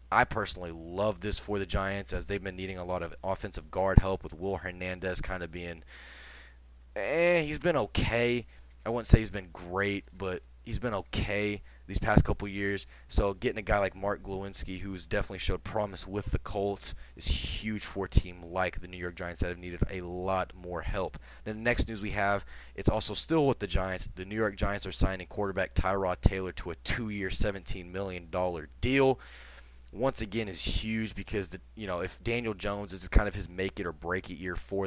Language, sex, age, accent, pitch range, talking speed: English, male, 20-39, American, 90-100 Hz, 210 wpm